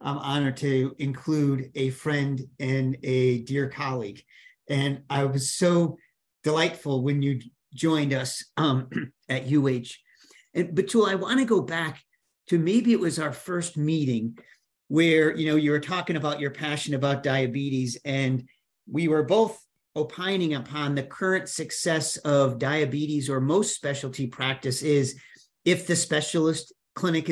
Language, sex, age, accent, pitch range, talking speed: English, male, 40-59, American, 140-165 Hz, 140 wpm